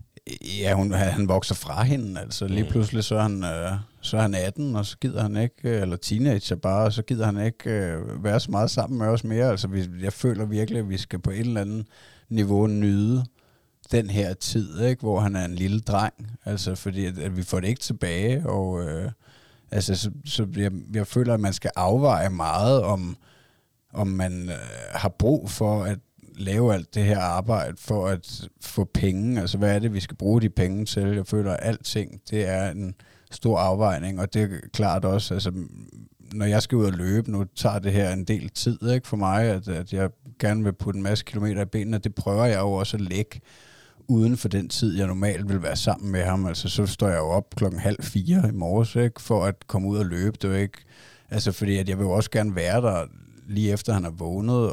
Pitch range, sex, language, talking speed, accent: 95-115 Hz, male, Danish, 220 wpm, native